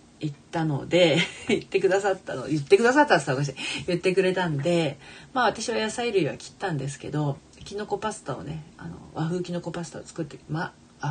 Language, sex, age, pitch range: Japanese, female, 40-59, 145-190 Hz